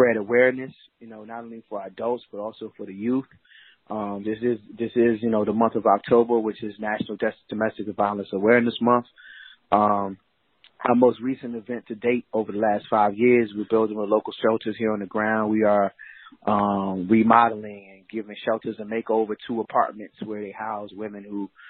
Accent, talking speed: American, 190 wpm